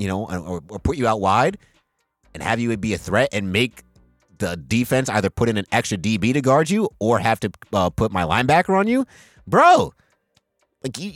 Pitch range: 95-125 Hz